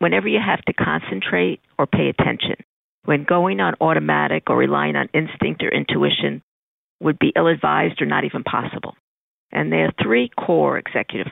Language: English